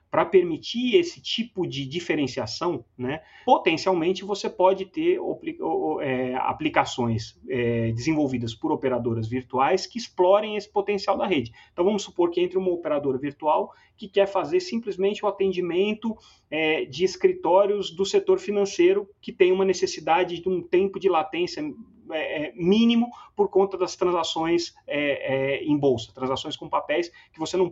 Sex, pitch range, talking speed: male, 140-210 Hz, 145 wpm